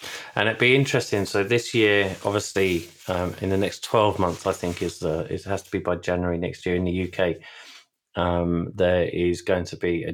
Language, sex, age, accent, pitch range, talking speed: English, male, 20-39, British, 85-100 Hz, 220 wpm